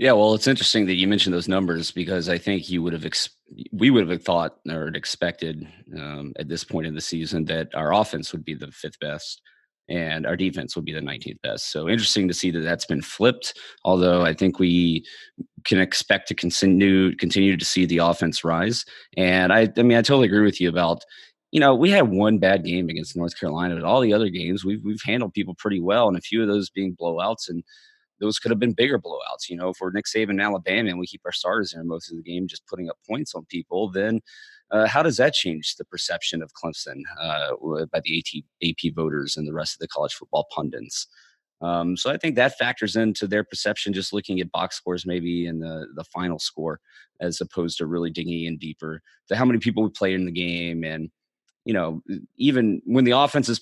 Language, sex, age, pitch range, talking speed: English, male, 30-49, 85-105 Hz, 225 wpm